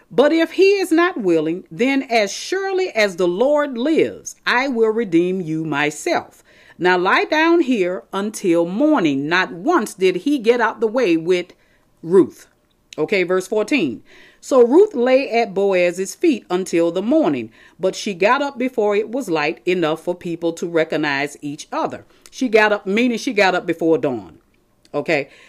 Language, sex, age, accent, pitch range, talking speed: English, female, 40-59, American, 180-295 Hz, 165 wpm